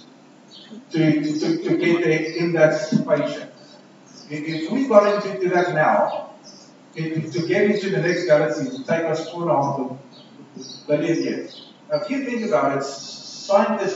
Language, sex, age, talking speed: English, male, 50-69, 140 wpm